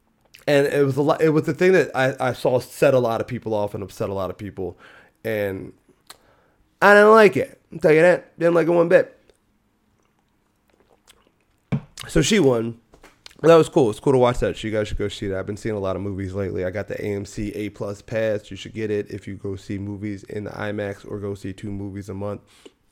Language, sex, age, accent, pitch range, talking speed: English, male, 20-39, American, 100-125 Hz, 235 wpm